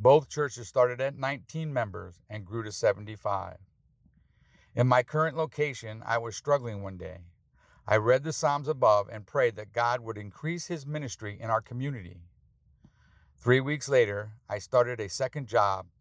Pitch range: 105-130 Hz